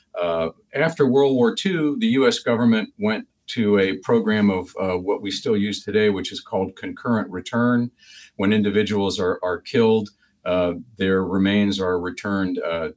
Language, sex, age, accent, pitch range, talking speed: English, male, 50-69, American, 90-110 Hz, 160 wpm